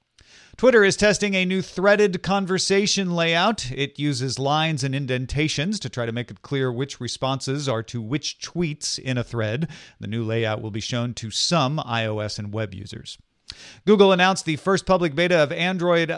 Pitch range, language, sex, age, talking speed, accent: 120-160 Hz, English, male, 40-59, 180 wpm, American